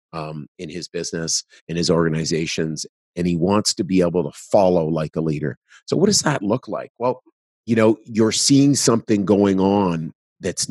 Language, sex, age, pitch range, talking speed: English, male, 40-59, 85-105 Hz, 185 wpm